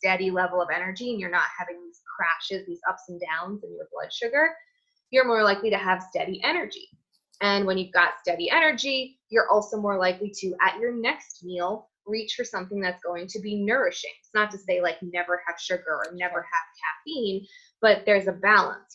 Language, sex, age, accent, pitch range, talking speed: English, female, 20-39, American, 180-240 Hz, 205 wpm